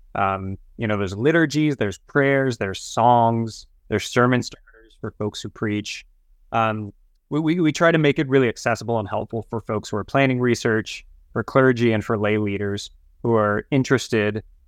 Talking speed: 175 wpm